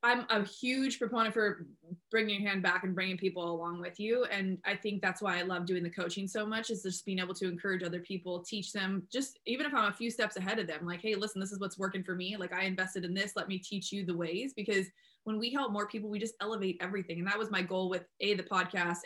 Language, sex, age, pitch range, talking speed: English, female, 20-39, 180-220 Hz, 270 wpm